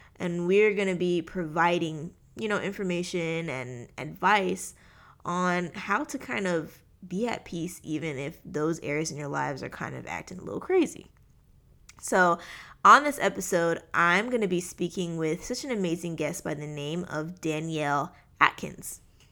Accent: American